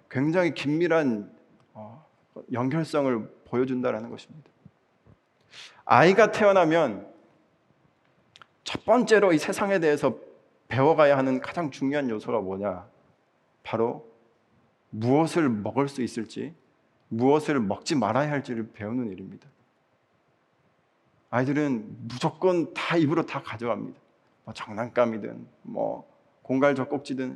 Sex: male